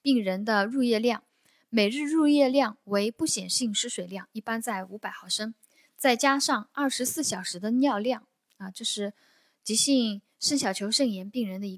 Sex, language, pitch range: female, Chinese, 200-260 Hz